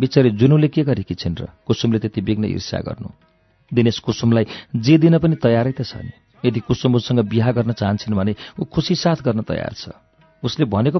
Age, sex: 50-69, male